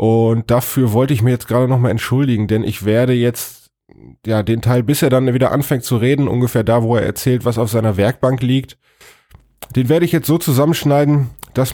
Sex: male